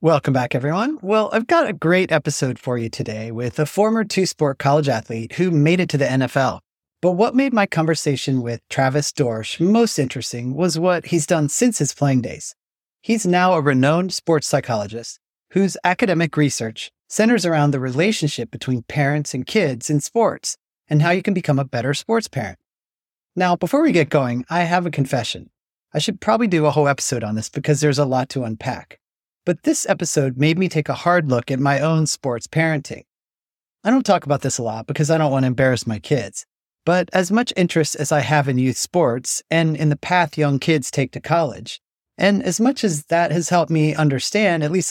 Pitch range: 130-180 Hz